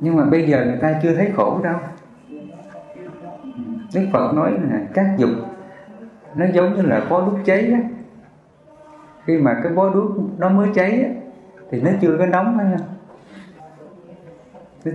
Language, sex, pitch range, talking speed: English, male, 140-195 Hz, 155 wpm